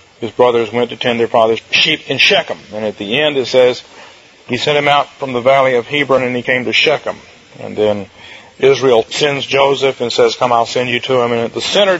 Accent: American